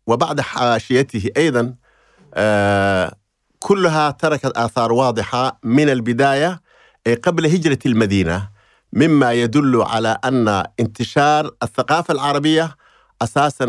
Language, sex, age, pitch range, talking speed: Arabic, male, 50-69, 120-150 Hz, 90 wpm